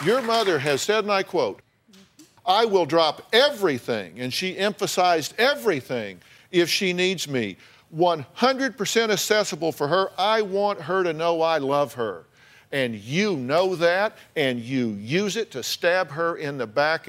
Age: 50-69